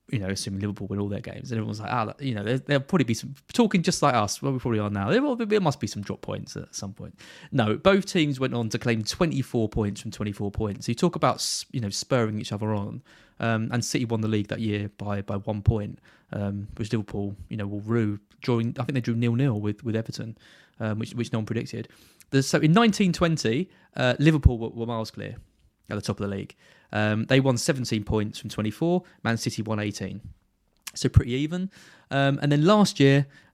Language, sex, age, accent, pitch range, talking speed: English, male, 20-39, British, 105-140 Hz, 230 wpm